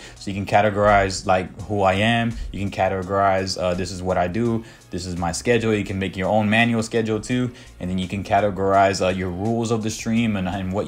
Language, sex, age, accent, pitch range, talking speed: English, male, 20-39, American, 95-120 Hz, 235 wpm